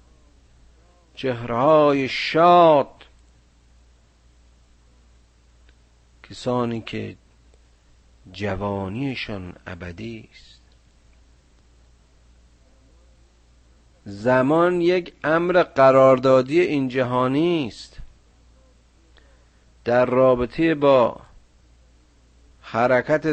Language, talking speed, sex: Persian, 45 wpm, male